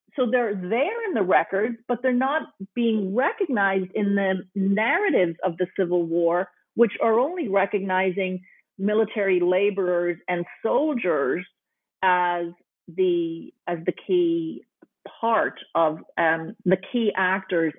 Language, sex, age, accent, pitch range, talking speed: English, female, 40-59, American, 185-235 Hz, 125 wpm